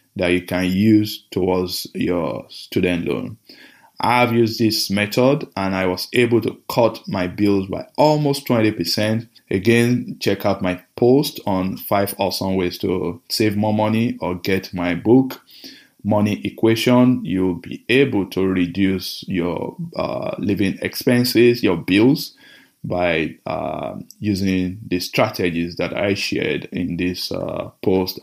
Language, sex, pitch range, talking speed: English, male, 95-125 Hz, 140 wpm